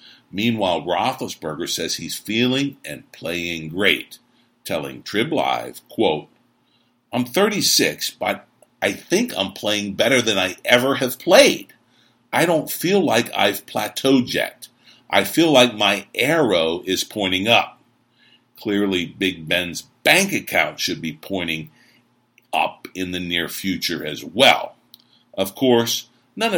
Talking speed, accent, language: 130 wpm, American, English